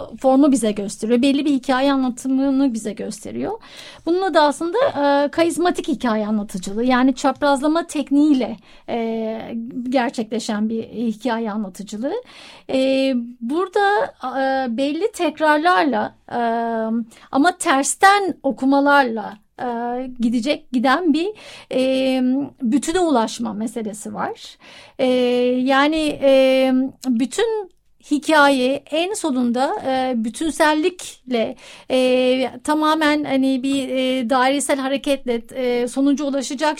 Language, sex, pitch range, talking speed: Turkish, female, 250-300 Hz, 95 wpm